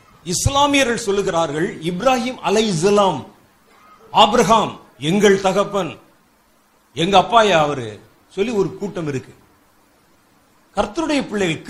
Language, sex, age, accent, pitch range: Tamil, male, 50-69, native, 165-235 Hz